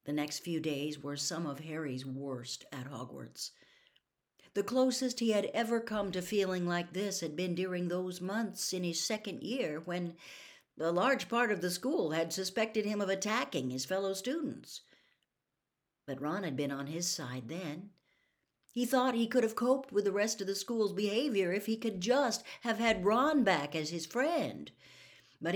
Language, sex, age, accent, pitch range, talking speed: English, female, 60-79, American, 150-210 Hz, 185 wpm